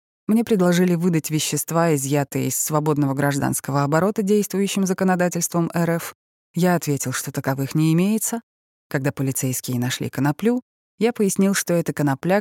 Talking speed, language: 130 wpm, Russian